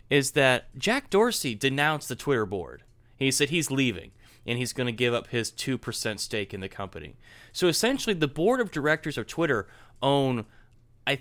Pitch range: 115-155 Hz